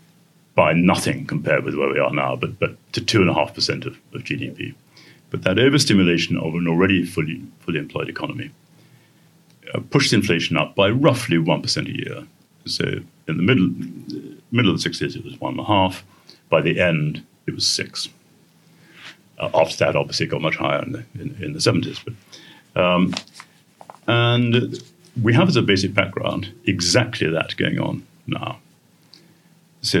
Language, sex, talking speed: English, male, 160 wpm